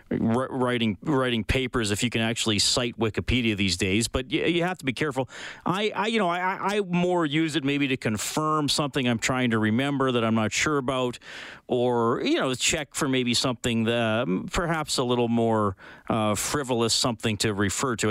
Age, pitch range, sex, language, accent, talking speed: 40-59, 110-145 Hz, male, English, American, 190 wpm